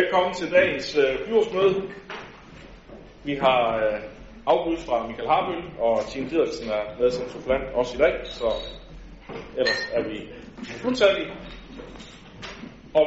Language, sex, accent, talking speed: Danish, male, native, 135 wpm